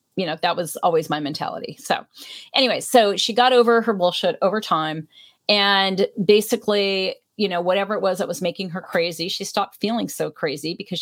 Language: English